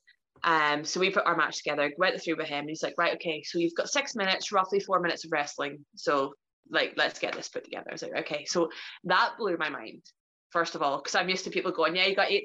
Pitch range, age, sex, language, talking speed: 160-195 Hz, 20-39, female, English, 265 wpm